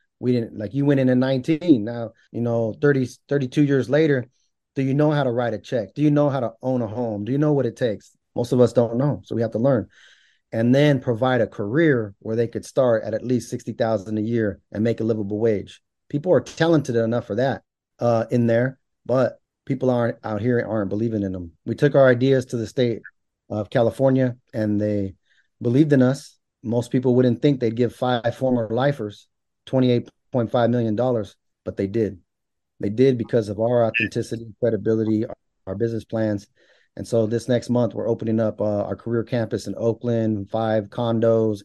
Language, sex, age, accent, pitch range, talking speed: English, male, 30-49, American, 110-130 Hz, 200 wpm